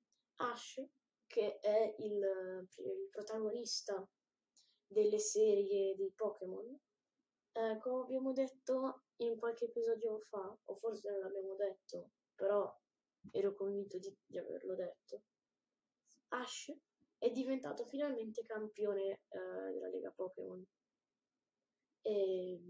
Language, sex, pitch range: Italian, female, 195-265 Hz